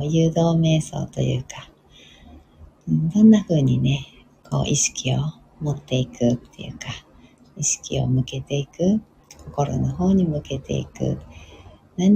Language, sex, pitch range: Japanese, female, 125-165 Hz